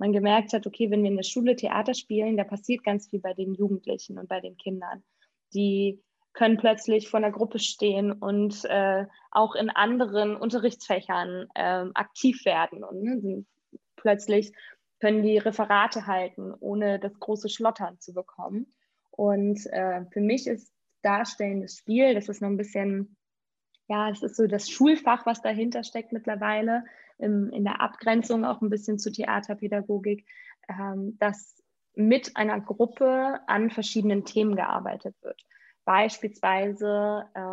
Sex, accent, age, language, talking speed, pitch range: female, German, 20-39, German, 145 wpm, 200-235 Hz